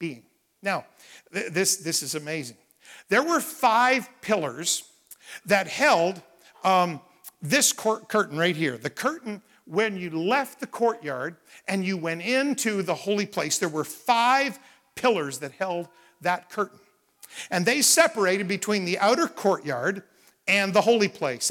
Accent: American